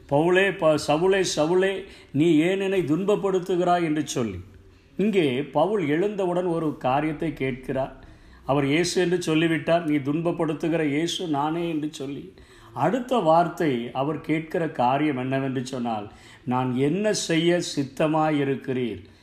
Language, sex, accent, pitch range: Tamil, male, native, 145-190 Hz